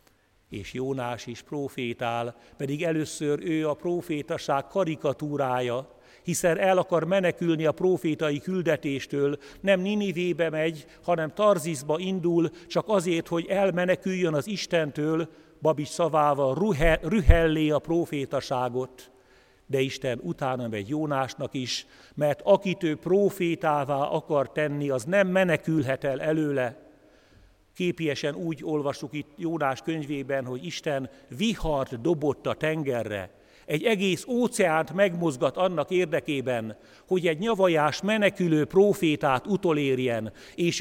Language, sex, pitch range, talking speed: Hungarian, male, 120-170 Hz, 115 wpm